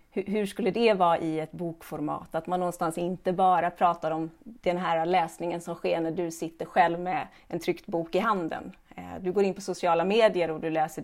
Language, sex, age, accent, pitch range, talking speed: Swedish, female, 30-49, native, 175-200 Hz, 205 wpm